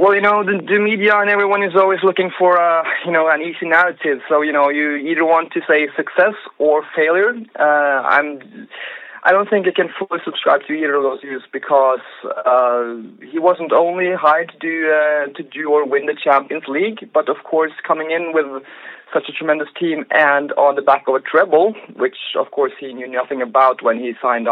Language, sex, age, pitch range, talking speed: English, male, 20-39, 135-175 Hz, 205 wpm